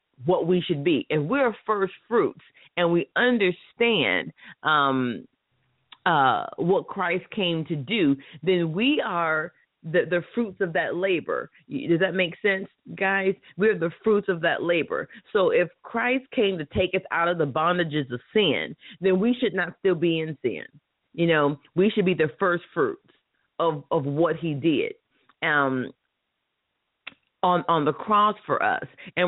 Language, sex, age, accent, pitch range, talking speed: English, female, 40-59, American, 155-195 Hz, 165 wpm